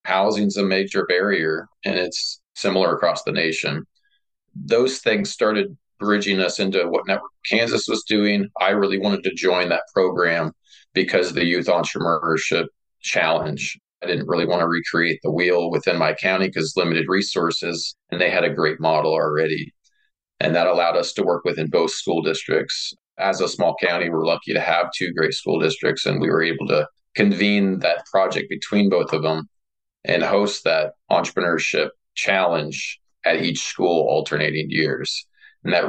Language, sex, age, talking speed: English, male, 40-59, 170 wpm